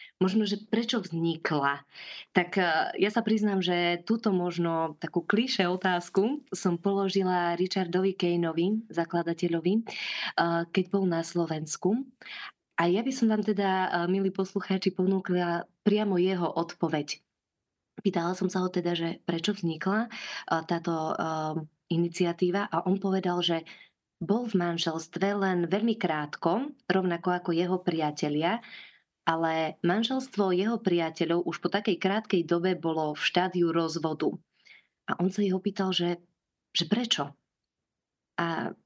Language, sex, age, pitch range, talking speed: Slovak, female, 20-39, 170-195 Hz, 125 wpm